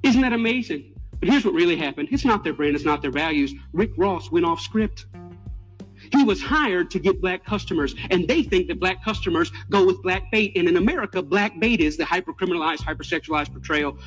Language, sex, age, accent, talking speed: English, male, 40-59, American, 215 wpm